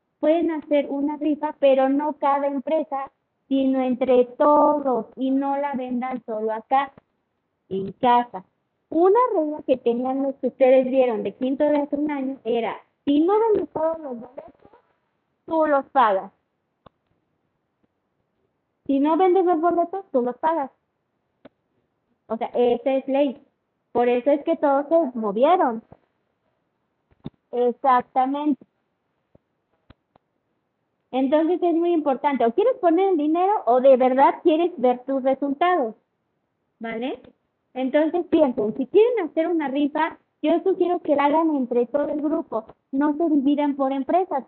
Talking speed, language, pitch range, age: 140 wpm, Spanish, 255-320 Hz, 30-49